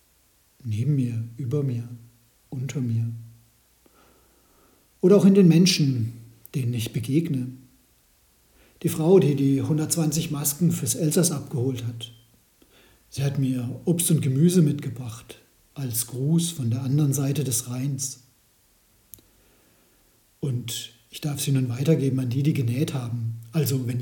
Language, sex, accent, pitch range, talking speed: German, male, German, 115-145 Hz, 130 wpm